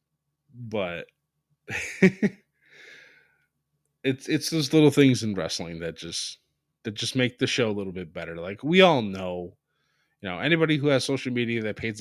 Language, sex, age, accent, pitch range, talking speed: English, male, 20-39, American, 105-145 Hz, 160 wpm